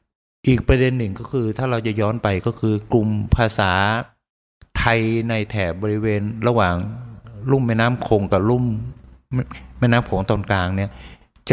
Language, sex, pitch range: Thai, male, 105-125 Hz